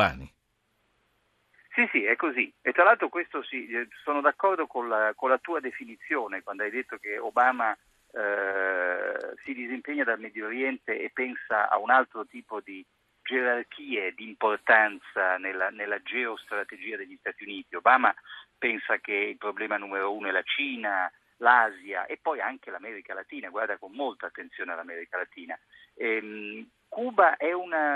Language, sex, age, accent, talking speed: Italian, male, 50-69, native, 150 wpm